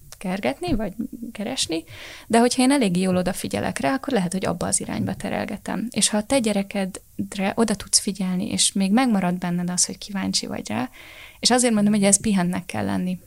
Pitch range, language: 180-215 Hz, Hungarian